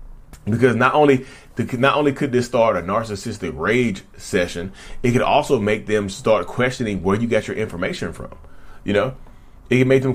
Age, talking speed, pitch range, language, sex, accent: 30-49, 190 wpm, 95-130 Hz, English, male, American